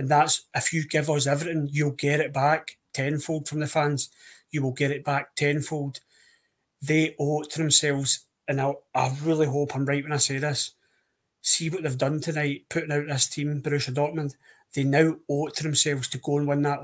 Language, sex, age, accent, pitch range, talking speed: English, male, 30-49, British, 135-150 Hz, 205 wpm